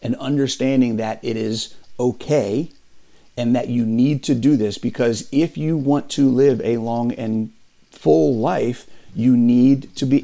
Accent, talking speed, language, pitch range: American, 165 wpm, English, 115-135 Hz